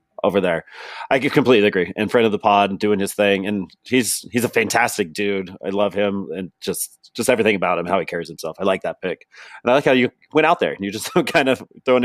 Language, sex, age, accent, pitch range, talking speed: English, male, 30-49, American, 100-110 Hz, 250 wpm